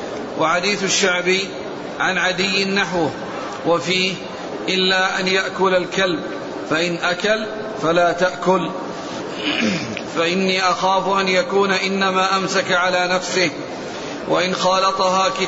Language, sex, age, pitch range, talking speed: Arabic, male, 40-59, 175-195 Hz, 95 wpm